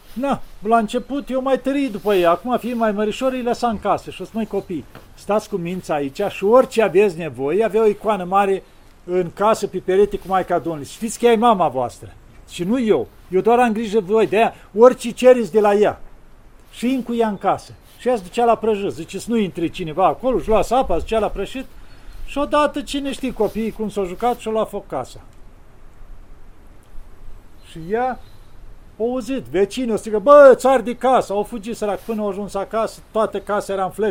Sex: male